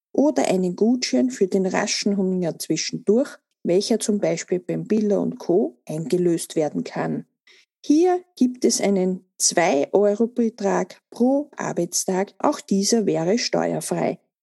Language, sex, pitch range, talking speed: German, female, 185-255 Hz, 120 wpm